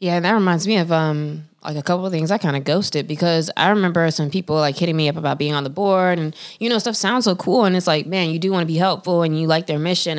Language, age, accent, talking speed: English, 20-39, American, 300 wpm